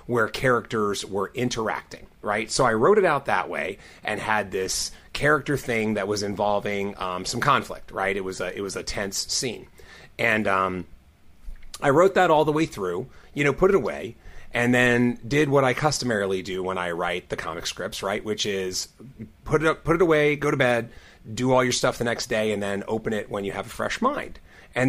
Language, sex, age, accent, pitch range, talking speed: English, male, 30-49, American, 100-145 Hz, 215 wpm